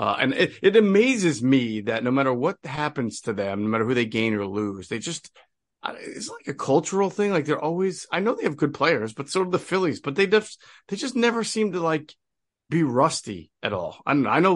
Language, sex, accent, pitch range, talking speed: English, male, American, 120-160 Hz, 235 wpm